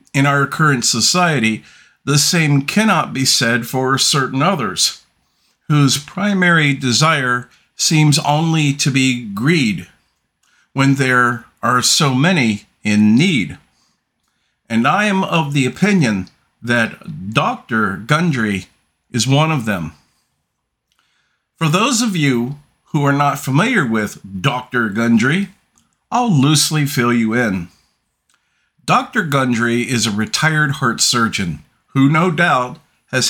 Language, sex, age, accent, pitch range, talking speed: English, male, 50-69, American, 125-165 Hz, 120 wpm